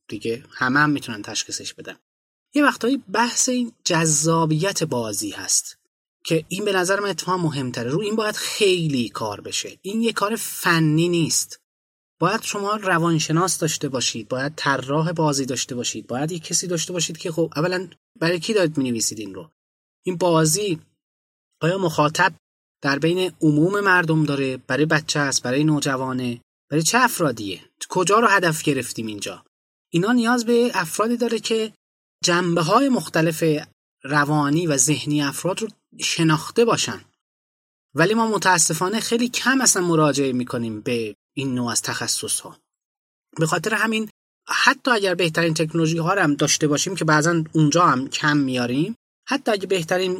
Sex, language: male, Persian